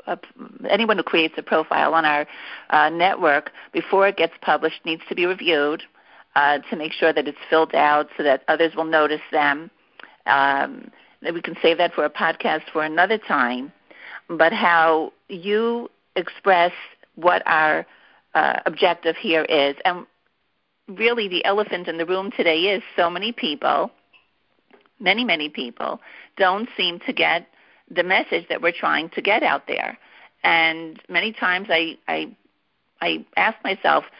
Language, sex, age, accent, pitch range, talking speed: English, female, 50-69, American, 160-205 Hz, 155 wpm